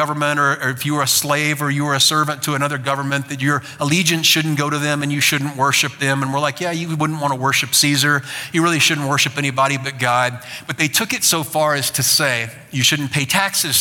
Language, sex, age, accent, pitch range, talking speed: English, male, 50-69, American, 130-155 Hz, 250 wpm